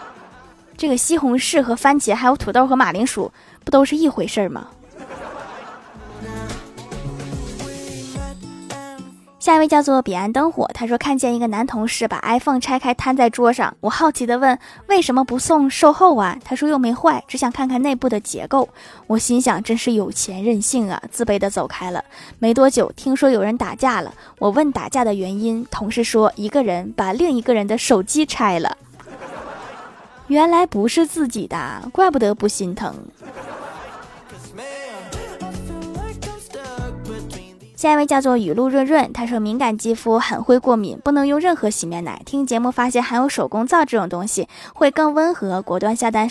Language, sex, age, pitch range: Chinese, female, 20-39, 210-275 Hz